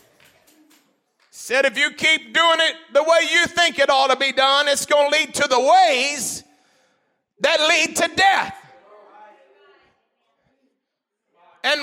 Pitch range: 235-335 Hz